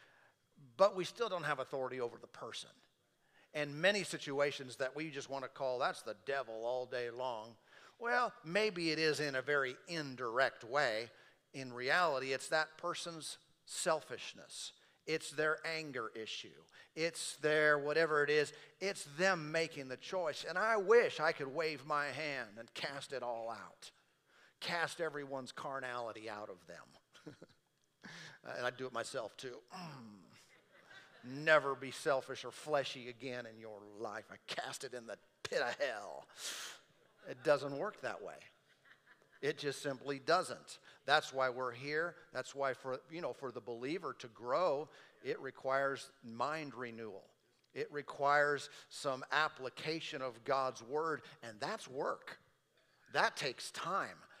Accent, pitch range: American, 130-155 Hz